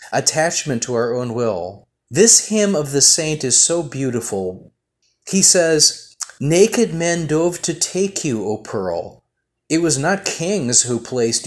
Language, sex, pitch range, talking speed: Ukrainian, male, 125-170 Hz, 150 wpm